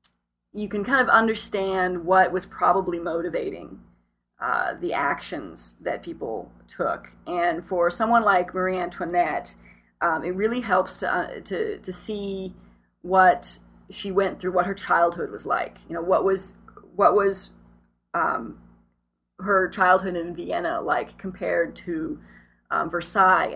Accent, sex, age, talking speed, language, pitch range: American, female, 30-49, 140 wpm, English, 160-195 Hz